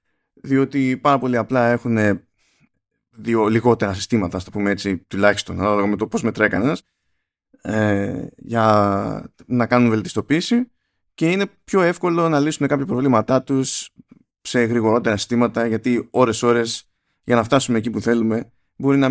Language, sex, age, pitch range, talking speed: Greek, male, 20-39, 105-135 Hz, 135 wpm